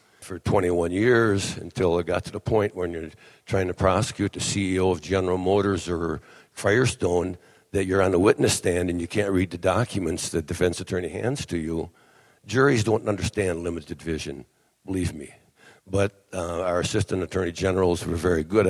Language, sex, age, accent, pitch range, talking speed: English, male, 60-79, American, 90-105 Hz, 175 wpm